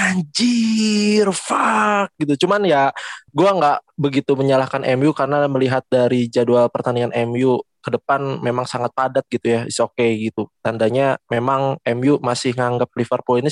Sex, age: male, 20-39